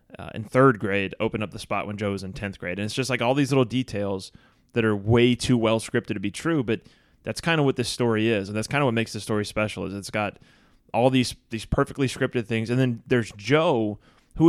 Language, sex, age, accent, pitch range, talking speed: English, male, 20-39, American, 105-130 Hz, 255 wpm